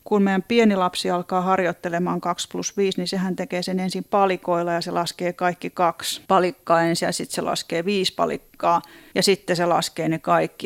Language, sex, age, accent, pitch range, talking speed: Finnish, female, 30-49, native, 170-200 Hz, 190 wpm